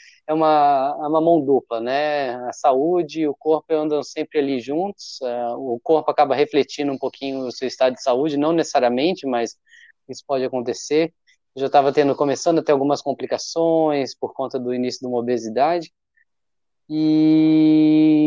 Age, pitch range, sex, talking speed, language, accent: 20-39, 130-160 Hz, male, 170 wpm, Portuguese, Brazilian